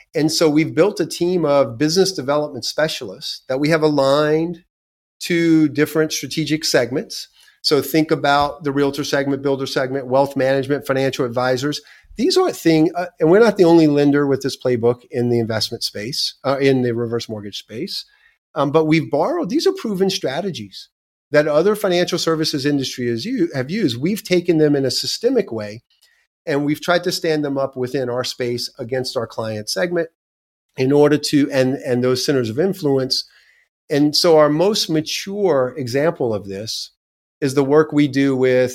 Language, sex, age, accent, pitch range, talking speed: English, male, 40-59, American, 130-155 Hz, 170 wpm